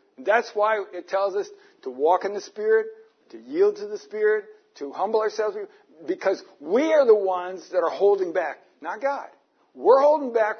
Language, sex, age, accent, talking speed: English, male, 60-79, American, 180 wpm